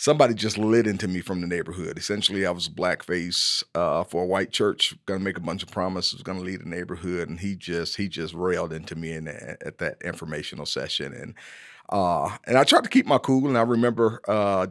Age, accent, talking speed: 40-59, American, 235 wpm